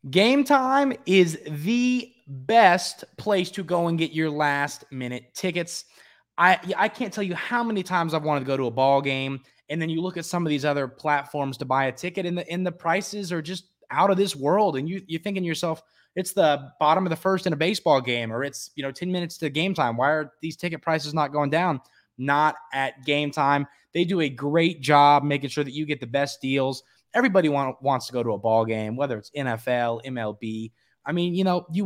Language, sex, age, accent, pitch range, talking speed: English, male, 20-39, American, 130-175 Hz, 230 wpm